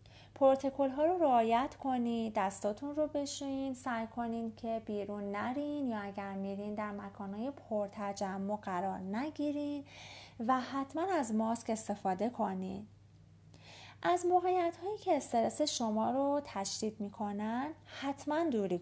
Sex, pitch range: female, 210-275 Hz